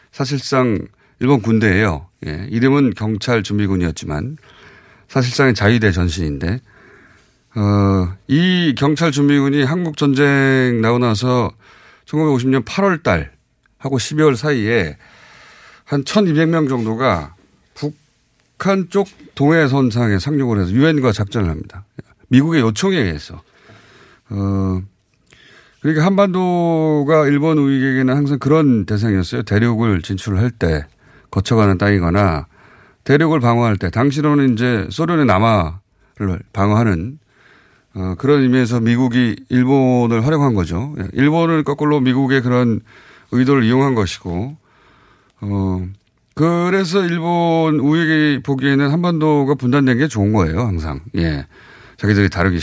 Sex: male